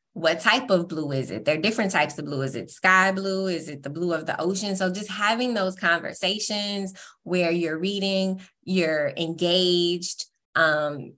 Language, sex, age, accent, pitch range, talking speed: English, female, 20-39, American, 160-190 Hz, 185 wpm